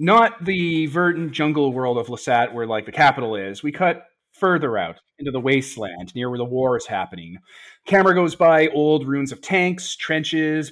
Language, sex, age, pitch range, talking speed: English, male, 30-49, 125-155 Hz, 185 wpm